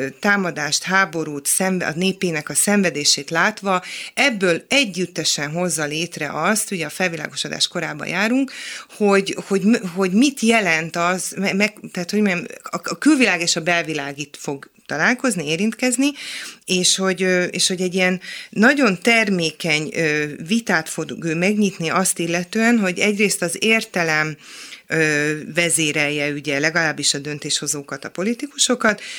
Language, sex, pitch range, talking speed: Hungarian, female, 160-205 Hz, 115 wpm